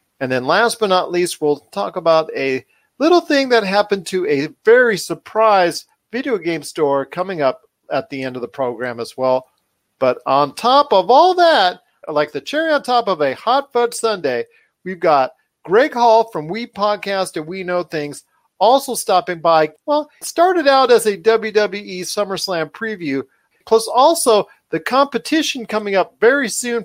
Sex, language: male, English